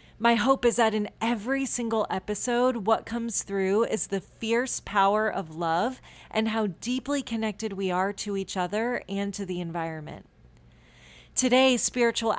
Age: 30-49